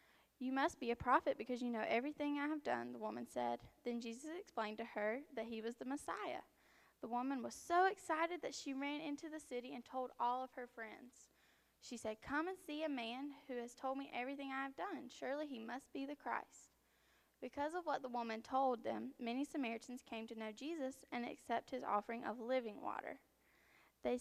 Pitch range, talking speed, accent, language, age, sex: 225-280 Hz, 210 wpm, American, English, 10-29, female